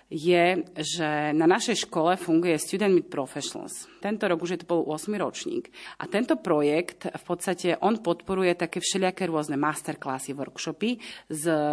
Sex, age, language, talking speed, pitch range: female, 30-49, Slovak, 155 wpm, 160-190 Hz